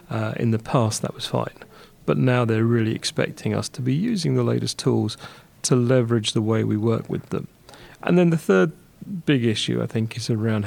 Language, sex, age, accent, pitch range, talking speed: English, male, 40-59, British, 110-130 Hz, 210 wpm